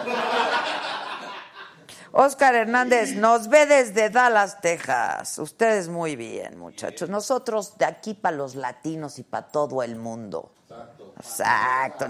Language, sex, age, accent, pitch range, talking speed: Spanish, female, 40-59, Mexican, 150-215 Hz, 115 wpm